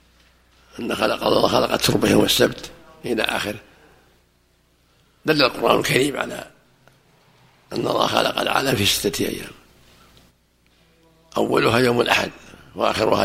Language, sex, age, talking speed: Arabic, male, 60-79, 110 wpm